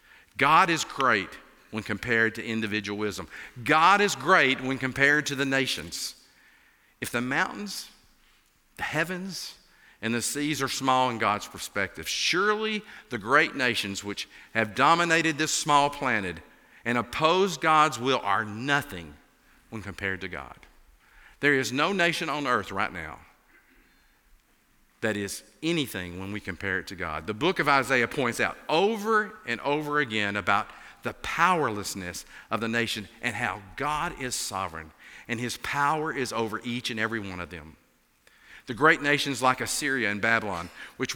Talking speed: 155 wpm